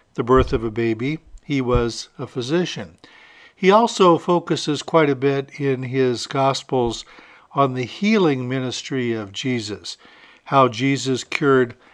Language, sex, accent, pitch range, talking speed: English, male, American, 125-155 Hz, 130 wpm